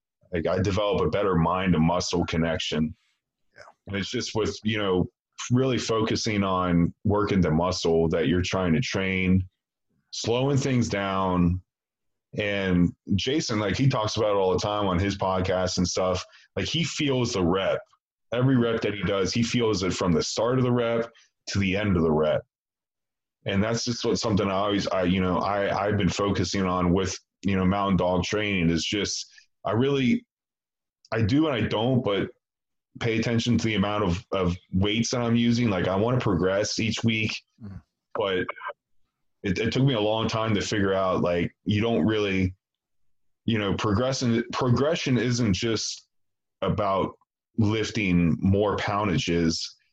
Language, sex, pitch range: English, male, 90-115 Hz